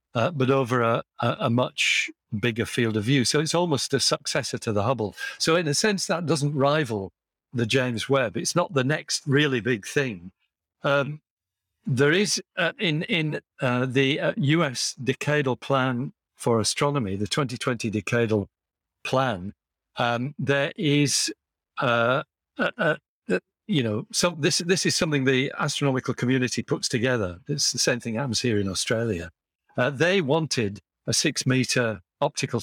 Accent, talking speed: British, 160 wpm